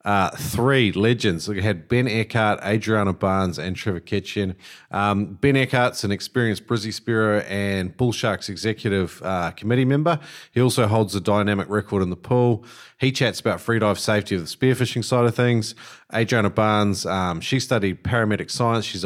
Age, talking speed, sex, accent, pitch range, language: 40-59, 175 wpm, male, Australian, 100-120 Hz, English